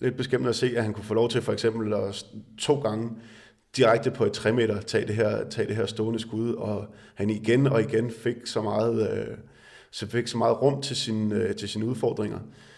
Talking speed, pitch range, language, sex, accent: 225 wpm, 110-120 Hz, Danish, male, native